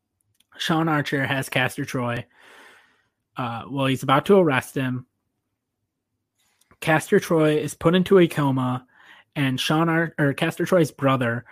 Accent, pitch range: American, 130-170 Hz